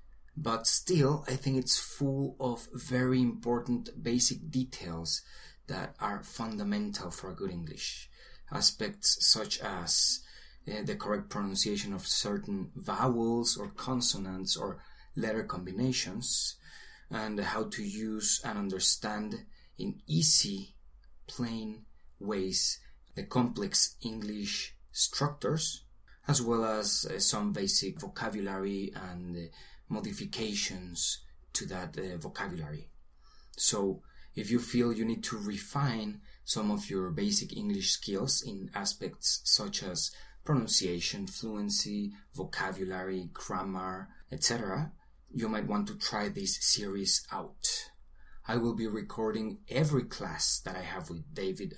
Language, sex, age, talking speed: English, male, 30-49, 120 wpm